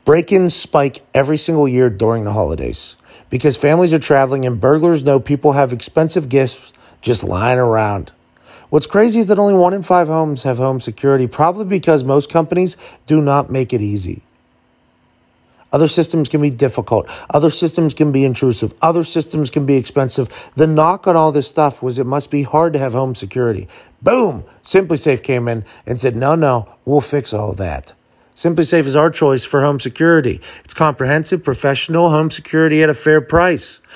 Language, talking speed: English, 180 wpm